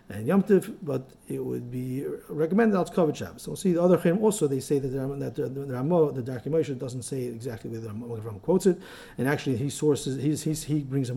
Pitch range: 125-165 Hz